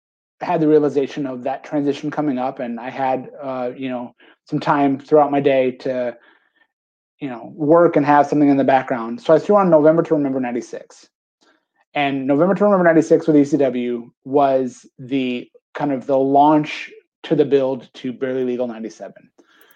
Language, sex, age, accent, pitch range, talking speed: English, male, 30-49, American, 130-155 Hz, 175 wpm